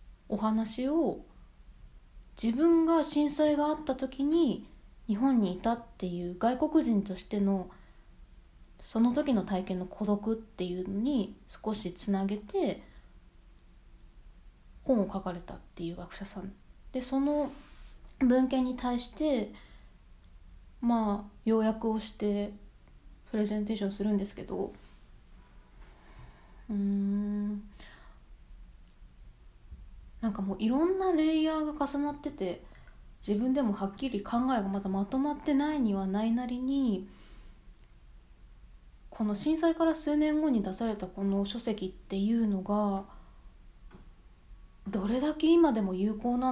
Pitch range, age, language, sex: 185-255 Hz, 20-39, Japanese, female